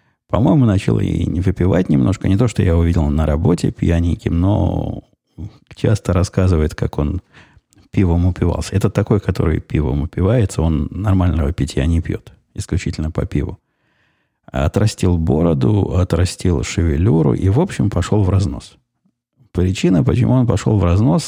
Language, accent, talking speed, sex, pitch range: Russian, native, 140 wpm, male, 85-105 Hz